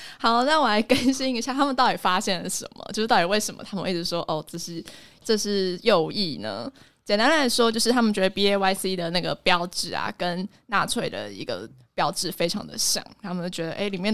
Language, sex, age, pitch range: Chinese, female, 20-39, 180-225 Hz